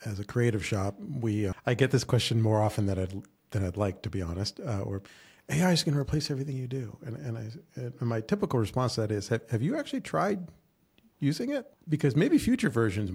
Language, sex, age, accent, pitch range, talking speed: English, male, 40-59, American, 100-125 Hz, 235 wpm